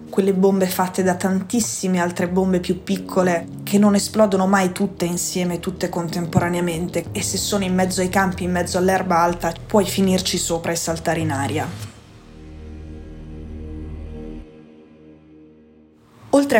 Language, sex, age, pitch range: Italian, female, 20-39, 165-190 Hz